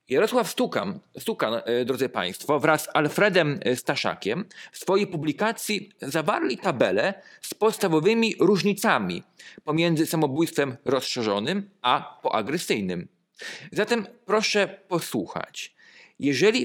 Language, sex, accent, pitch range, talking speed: Polish, male, native, 150-210 Hz, 95 wpm